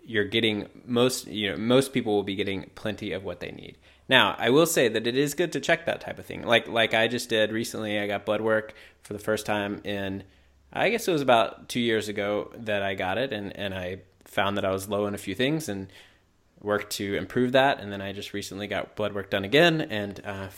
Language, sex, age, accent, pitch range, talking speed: English, male, 20-39, American, 95-115 Hz, 250 wpm